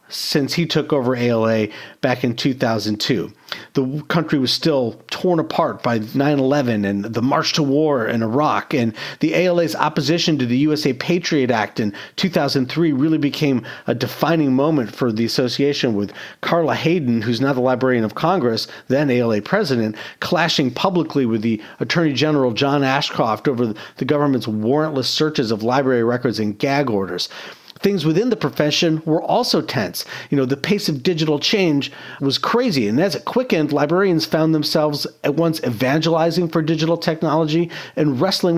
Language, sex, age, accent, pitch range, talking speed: English, male, 40-59, American, 130-165 Hz, 160 wpm